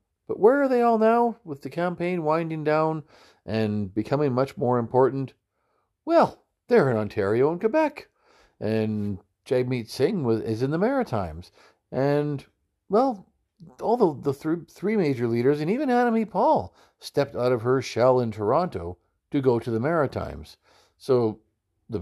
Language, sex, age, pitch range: English, male, 50-69, 100-160 Hz